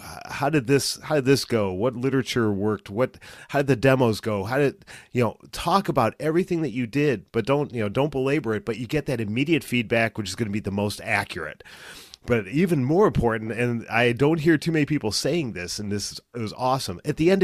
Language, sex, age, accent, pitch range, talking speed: English, male, 40-59, American, 105-135 Hz, 235 wpm